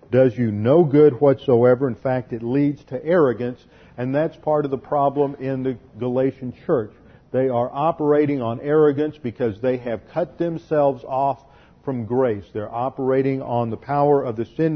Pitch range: 125-145 Hz